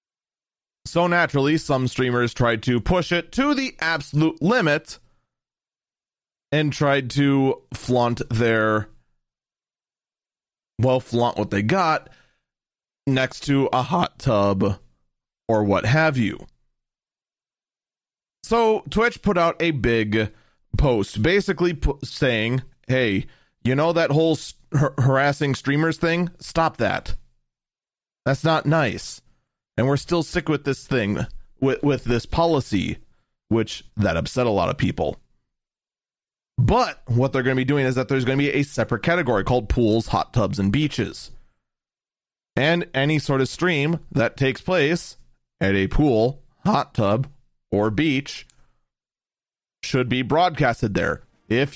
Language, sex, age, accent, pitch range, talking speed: English, male, 30-49, American, 115-150 Hz, 130 wpm